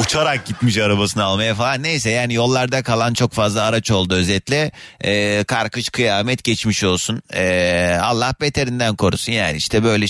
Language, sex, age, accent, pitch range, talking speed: Turkish, male, 30-49, native, 100-145 Hz, 155 wpm